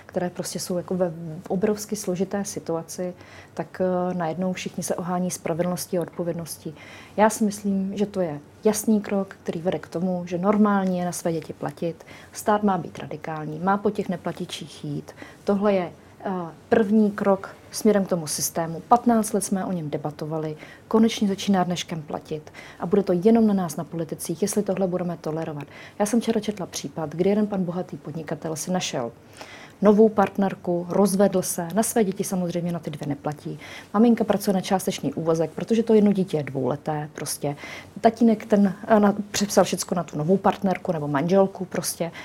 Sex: female